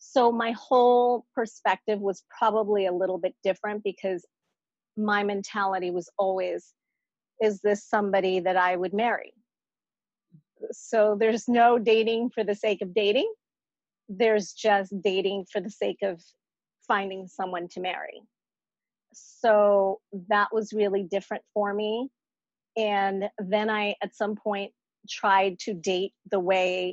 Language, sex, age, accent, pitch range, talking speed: English, female, 40-59, American, 195-245 Hz, 135 wpm